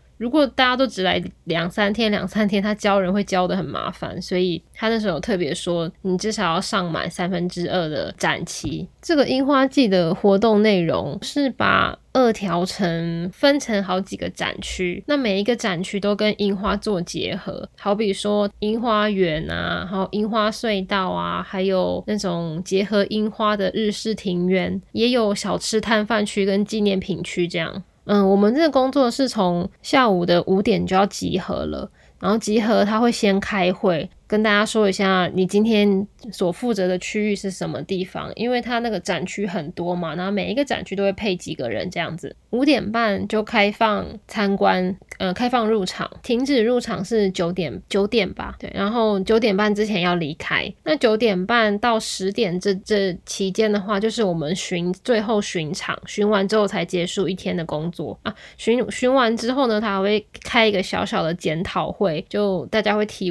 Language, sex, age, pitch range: Chinese, female, 10-29, 185-220 Hz